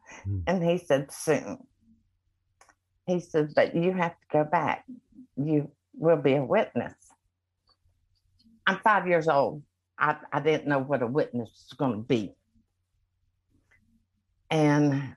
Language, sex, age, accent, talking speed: English, female, 60-79, American, 130 wpm